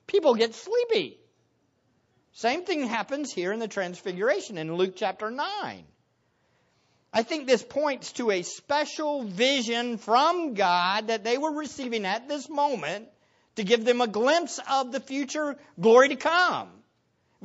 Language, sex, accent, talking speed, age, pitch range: English, male, American, 150 wpm, 50-69, 215-290 Hz